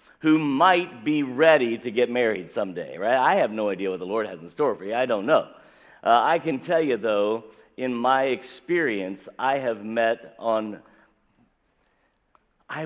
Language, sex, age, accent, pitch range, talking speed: English, male, 50-69, American, 110-145 Hz, 175 wpm